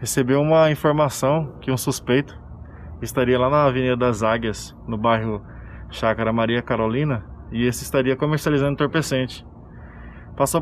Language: Portuguese